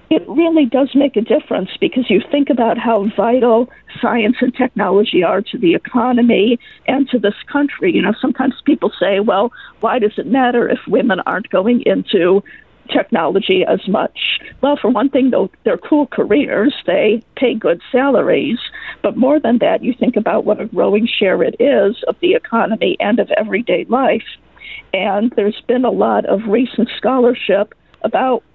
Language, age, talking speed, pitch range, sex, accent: English, 50-69, 170 wpm, 215-265 Hz, female, American